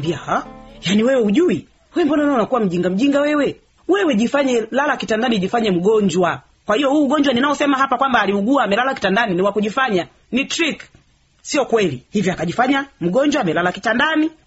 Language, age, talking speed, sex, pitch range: Swahili, 40-59, 160 wpm, female, 205-275 Hz